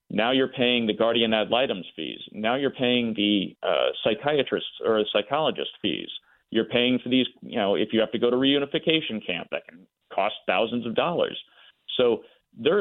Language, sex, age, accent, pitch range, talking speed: English, male, 40-59, American, 115-150 Hz, 185 wpm